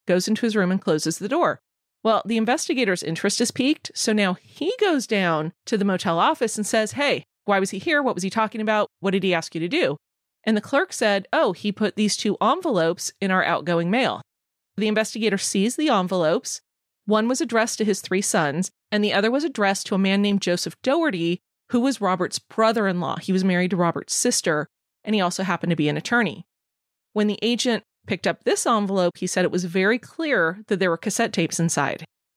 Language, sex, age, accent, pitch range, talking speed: English, female, 30-49, American, 185-230 Hz, 215 wpm